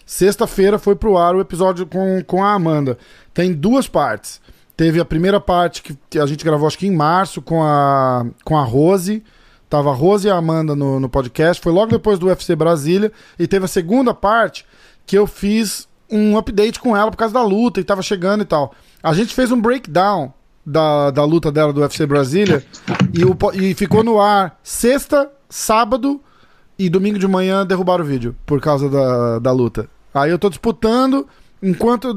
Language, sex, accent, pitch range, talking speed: Portuguese, male, Brazilian, 155-205 Hz, 190 wpm